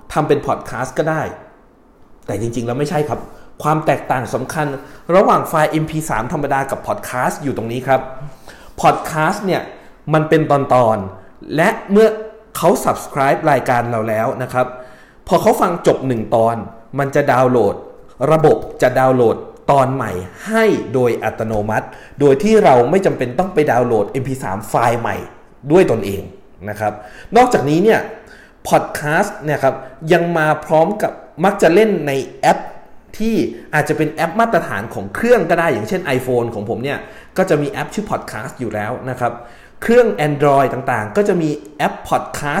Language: Thai